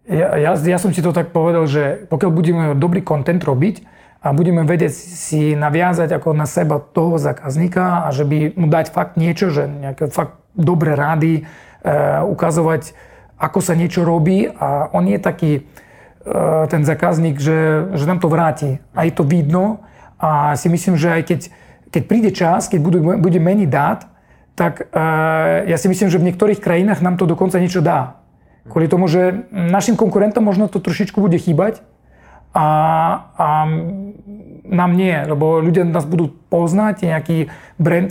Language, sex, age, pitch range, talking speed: Slovak, male, 40-59, 160-185 Hz, 165 wpm